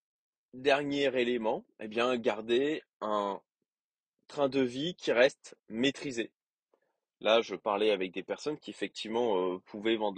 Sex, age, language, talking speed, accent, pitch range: male, 20-39, French, 135 wpm, French, 100-155 Hz